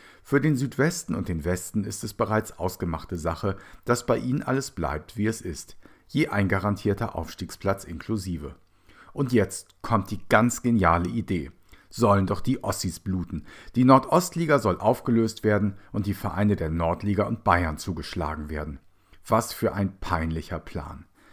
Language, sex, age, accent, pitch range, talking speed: German, male, 50-69, German, 85-115 Hz, 155 wpm